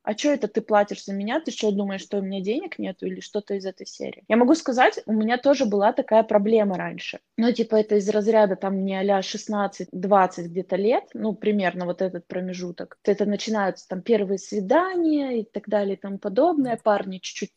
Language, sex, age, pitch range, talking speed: Russian, female, 20-39, 195-225 Hz, 200 wpm